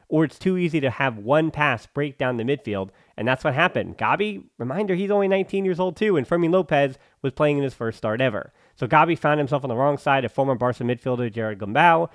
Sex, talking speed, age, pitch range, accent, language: male, 235 wpm, 30-49, 125-165 Hz, American, English